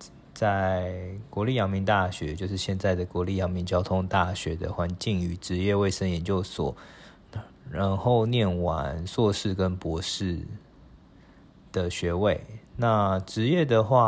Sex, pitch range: male, 90-100 Hz